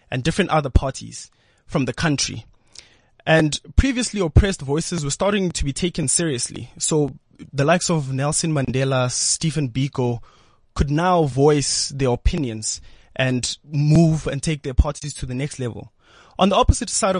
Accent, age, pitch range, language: South African, 20-39, 125-165 Hz, English